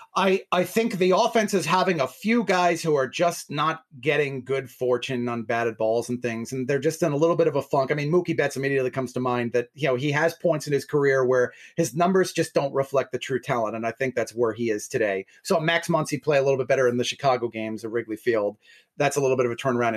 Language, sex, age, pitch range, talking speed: English, male, 30-49, 135-190 Hz, 265 wpm